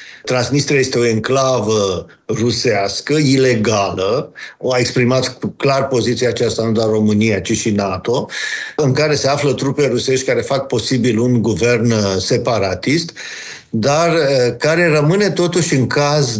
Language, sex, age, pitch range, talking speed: Romanian, male, 50-69, 115-145 Hz, 130 wpm